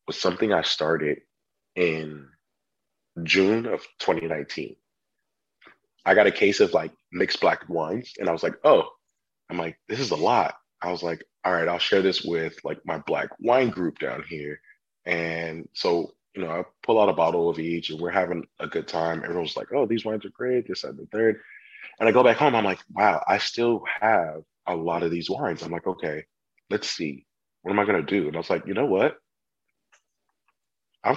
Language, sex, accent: English, male, American